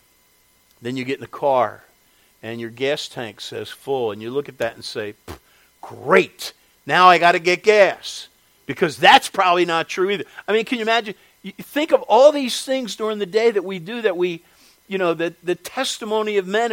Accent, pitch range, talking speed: American, 150-240 Hz, 205 wpm